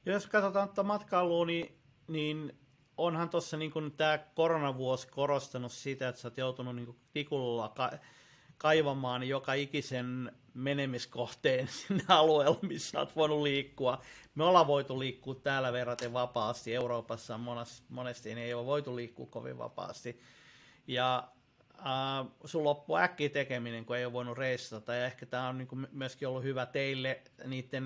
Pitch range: 125-150 Hz